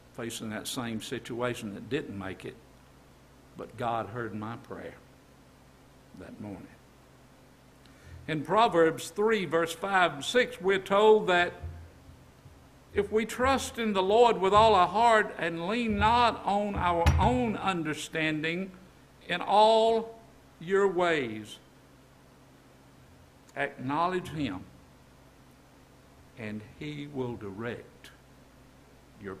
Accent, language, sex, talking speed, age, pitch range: American, English, male, 110 wpm, 60-79, 120-185 Hz